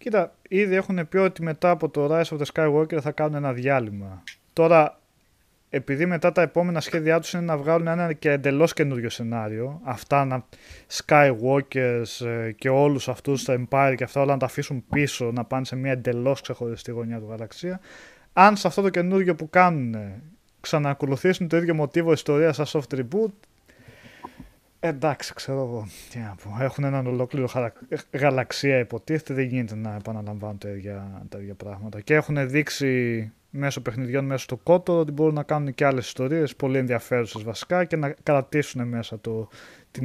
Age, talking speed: 20-39, 165 wpm